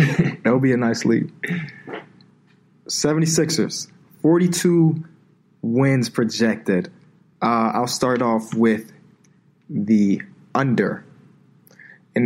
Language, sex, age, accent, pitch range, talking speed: English, male, 20-39, American, 120-150 Hz, 95 wpm